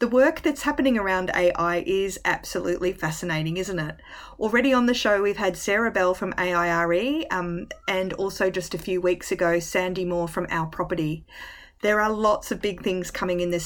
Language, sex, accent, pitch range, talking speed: English, female, Australian, 170-200 Hz, 190 wpm